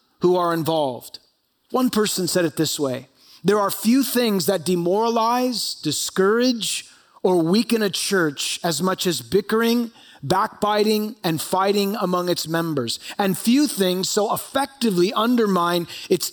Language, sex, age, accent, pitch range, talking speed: English, male, 30-49, American, 180-235 Hz, 135 wpm